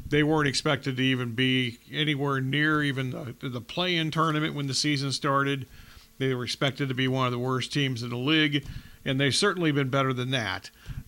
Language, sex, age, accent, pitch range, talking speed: English, male, 50-69, American, 130-150 Hz, 195 wpm